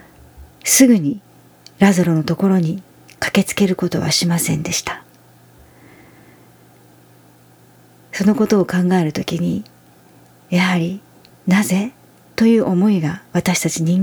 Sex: female